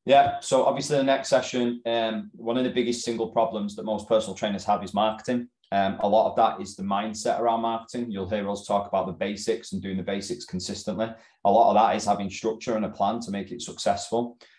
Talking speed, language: 235 wpm, English